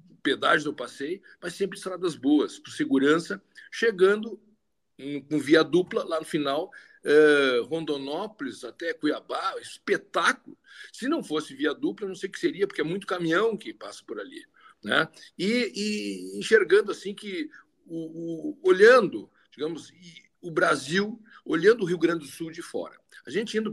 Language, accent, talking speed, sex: Portuguese, Brazilian, 155 wpm, male